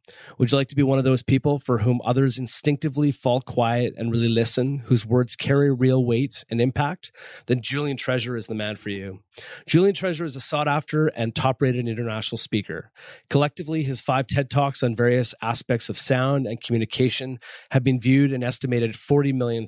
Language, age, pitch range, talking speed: English, 30-49, 110-135 Hz, 185 wpm